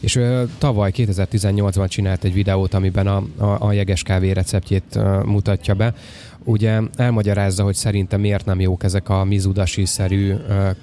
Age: 20-39